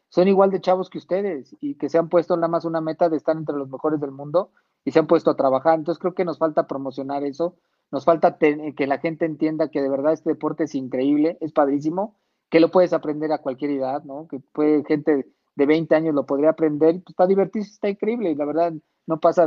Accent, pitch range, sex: Mexican, 140-165 Hz, male